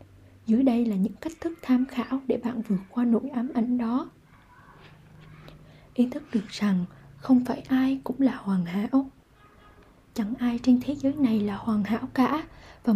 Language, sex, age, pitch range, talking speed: Vietnamese, female, 20-39, 220-275 Hz, 175 wpm